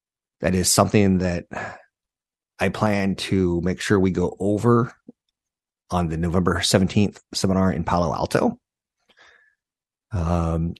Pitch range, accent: 80-105 Hz, American